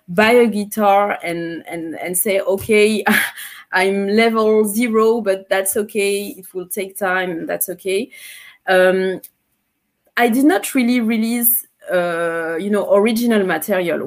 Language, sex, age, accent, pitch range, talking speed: English, female, 20-39, French, 185-220 Hz, 130 wpm